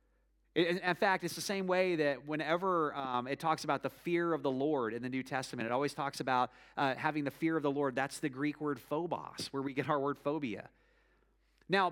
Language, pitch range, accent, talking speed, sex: English, 120-155 Hz, American, 220 wpm, male